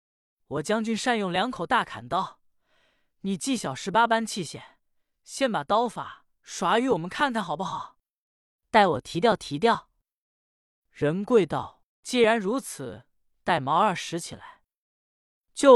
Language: Chinese